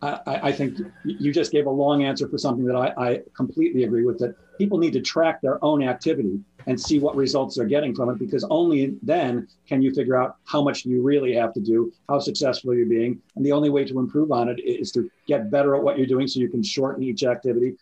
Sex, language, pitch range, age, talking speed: male, English, 120-145 Hz, 40-59, 245 wpm